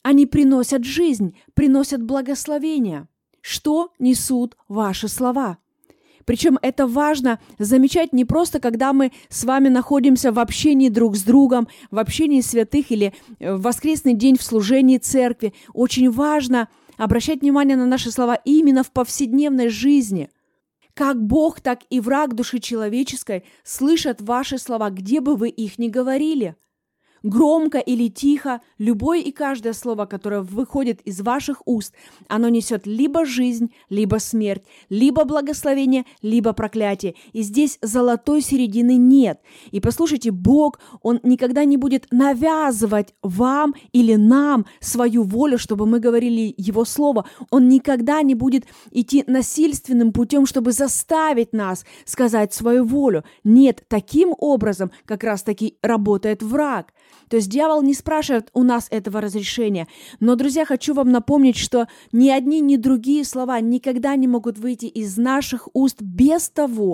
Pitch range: 230-280 Hz